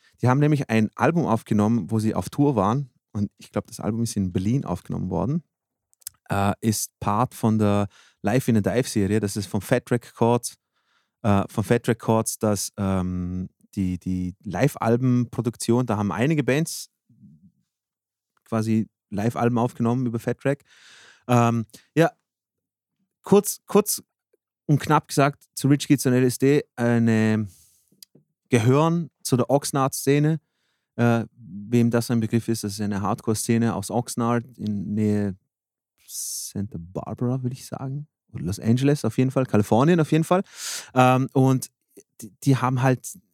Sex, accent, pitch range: male, German, 110-140 Hz